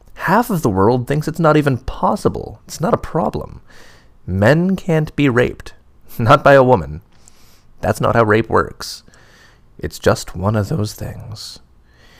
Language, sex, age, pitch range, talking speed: English, male, 20-39, 105-145 Hz, 155 wpm